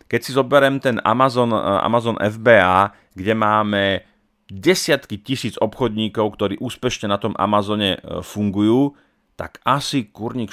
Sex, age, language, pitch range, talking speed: male, 30-49, Slovak, 100-125 Hz, 120 wpm